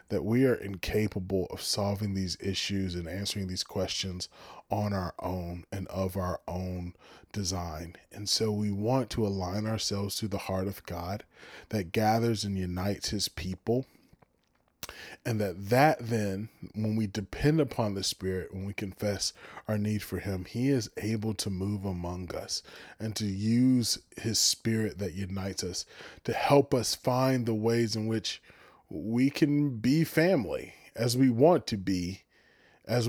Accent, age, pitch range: American, 20-39, 95-120 Hz